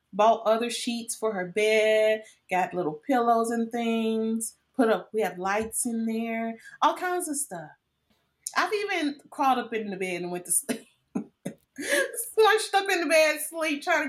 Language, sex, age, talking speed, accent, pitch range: English, female, 30-49, 175 wpm, American, 170-225 Hz